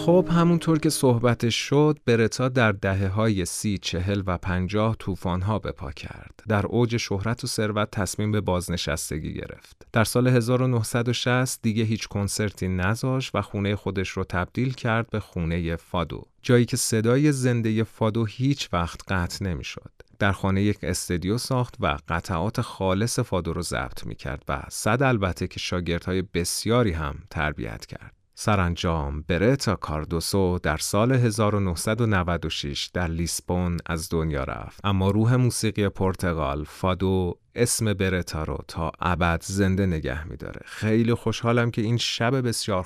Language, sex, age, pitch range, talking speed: Persian, male, 30-49, 85-115 Hz, 145 wpm